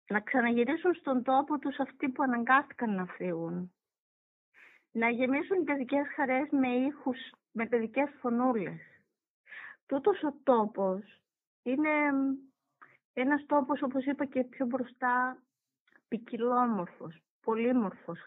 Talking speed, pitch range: 110 wpm, 230-280 Hz